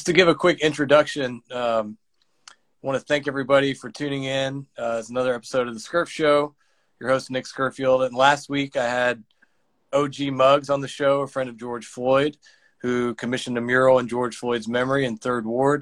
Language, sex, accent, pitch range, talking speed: English, male, American, 120-135 Hz, 200 wpm